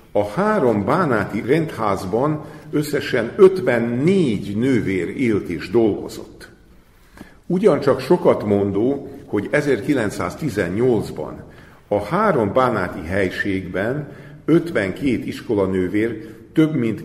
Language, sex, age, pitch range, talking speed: Hungarian, male, 50-69, 95-140 Hz, 85 wpm